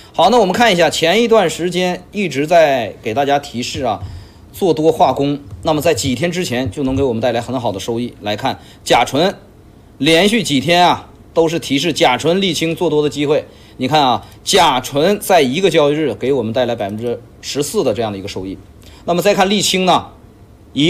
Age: 30-49